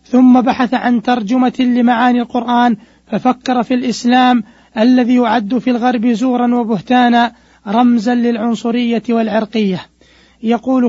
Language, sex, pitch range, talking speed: Arabic, male, 230-250 Hz, 105 wpm